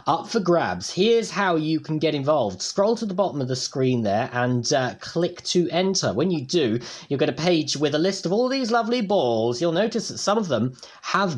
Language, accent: English, British